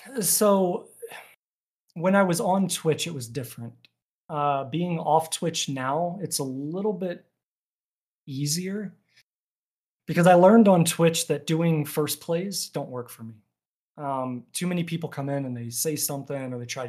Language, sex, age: English, male, 30-49